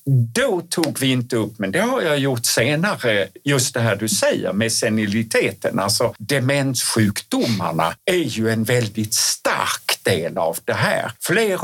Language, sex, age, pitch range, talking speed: Swedish, male, 60-79, 110-150 Hz, 155 wpm